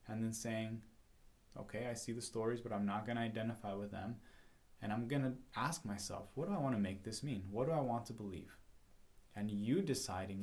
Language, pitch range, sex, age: English, 95-115 Hz, male, 20-39